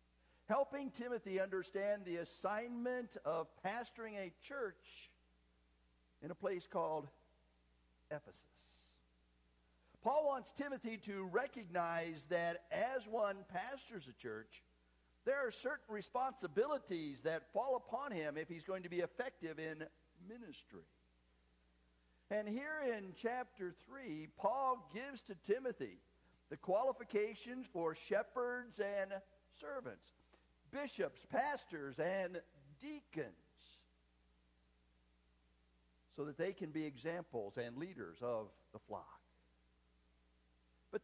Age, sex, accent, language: 50-69, male, American, English